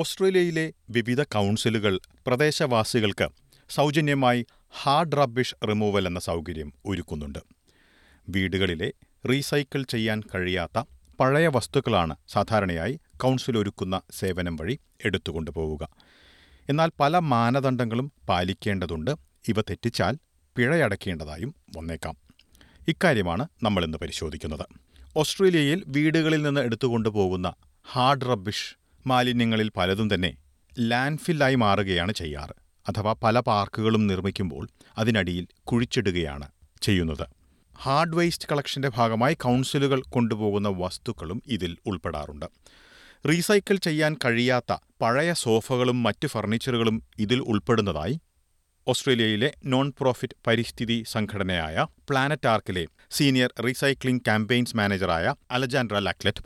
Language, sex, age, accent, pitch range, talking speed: Malayalam, male, 40-59, native, 90-130 Hz, 90 wpm